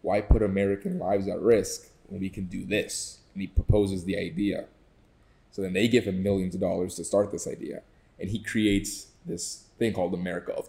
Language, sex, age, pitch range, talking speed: English, male, 20-39, 95-105 Hz, 200 wpm